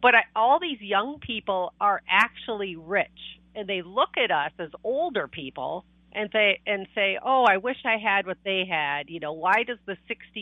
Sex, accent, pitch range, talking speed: female, American, 175-220 Hz, 195 wpm